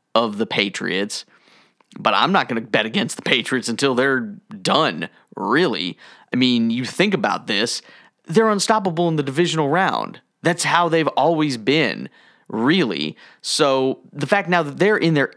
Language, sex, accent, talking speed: English, male, American, 165 wpm